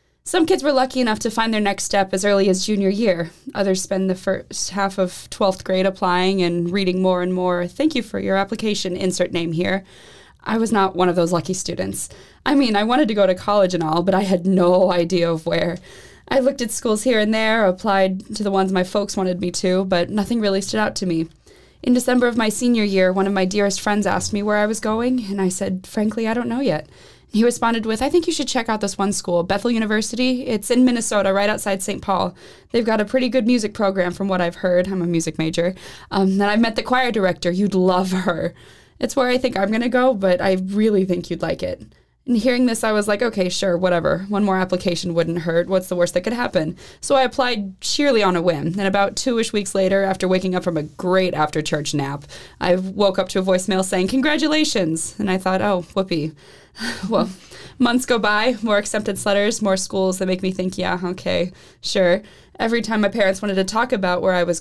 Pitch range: 185-220 Hz